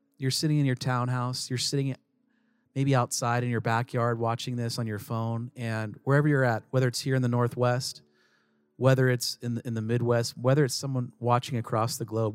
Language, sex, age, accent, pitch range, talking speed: English, male, 40-59, American, 110-135 Hz, 195 wpm